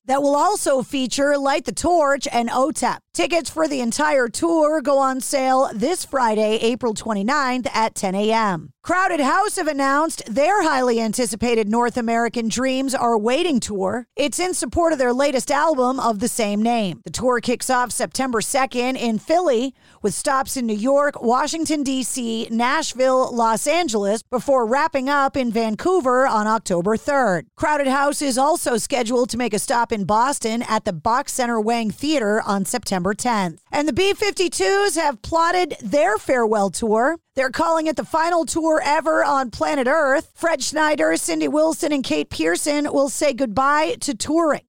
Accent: American